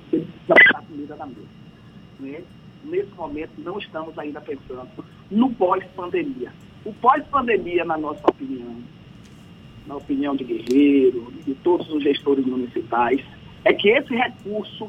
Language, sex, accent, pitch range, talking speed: Portuguese, male, Brazilian, 150-215 Hz, 105 wpm